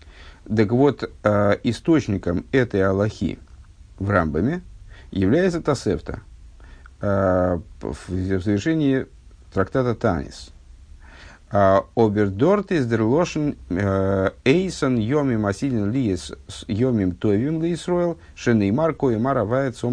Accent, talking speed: native, 40 wpm